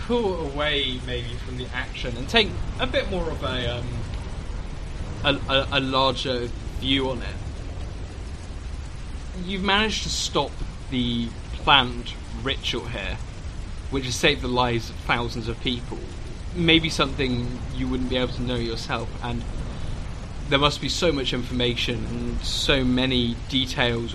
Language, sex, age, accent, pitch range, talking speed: English, male, 20-39, British, 95-125 Hz, 145 wpm